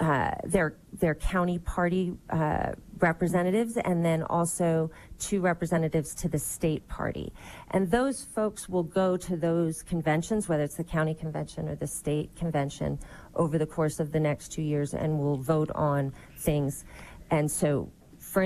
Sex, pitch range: female, 150-175 Hz